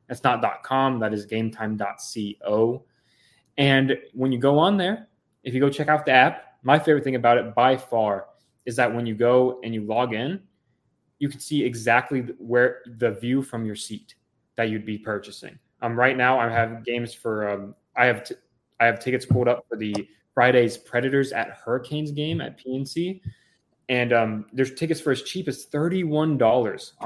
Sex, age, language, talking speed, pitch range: male, 20-39, English, 185 wpm, 115-140 Hz